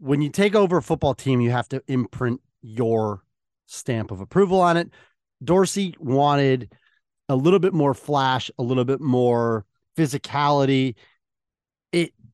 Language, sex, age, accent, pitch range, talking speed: English, male, 30-49, American, 115-140 Hz, 145 wpm